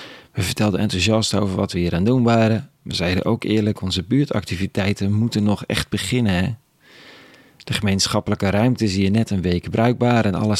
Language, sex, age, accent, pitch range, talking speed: Dutch, male, 40-59, Dutch, 100-125 Hz, 175 wpm